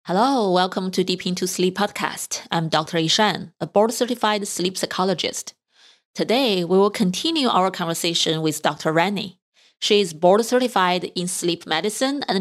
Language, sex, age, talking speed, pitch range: English, female, 20-39, 145 wpm, 170-225 Hz